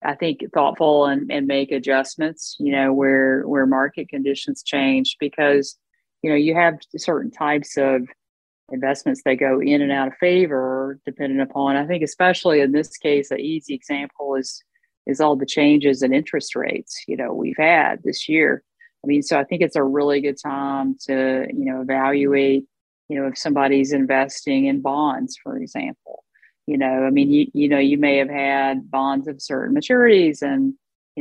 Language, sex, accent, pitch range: English, female, American, 135-165 Hz